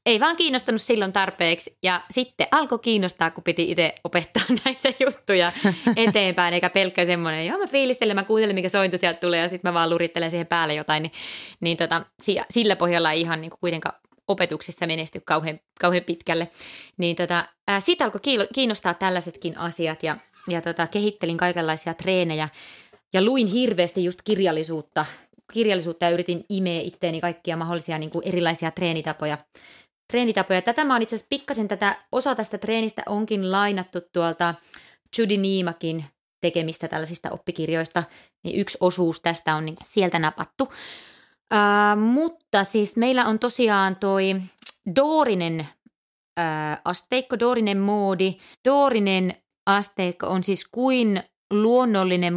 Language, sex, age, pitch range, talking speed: Finnish, female, 20-39, 170-210 Hz, 135 wpm